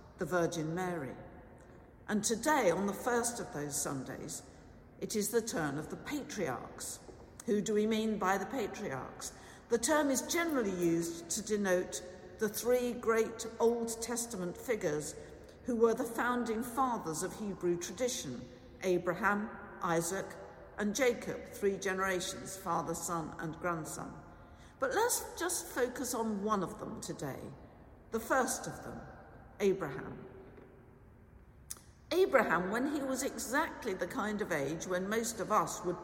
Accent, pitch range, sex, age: British, 175-235 Hz, female, 50-69